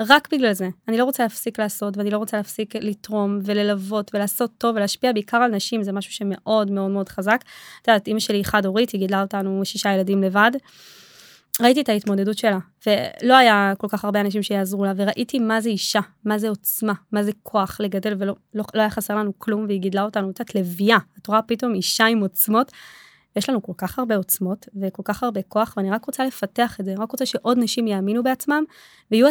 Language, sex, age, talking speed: Hebrew, female, 20-39, 205 wpm